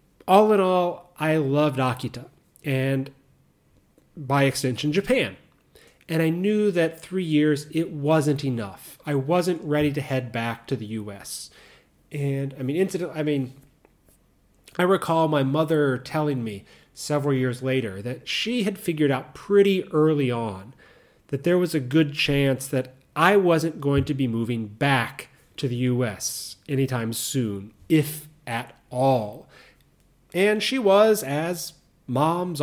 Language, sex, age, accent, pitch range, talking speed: English, male, 40-59, American, 125-160 Hz, 145 wpm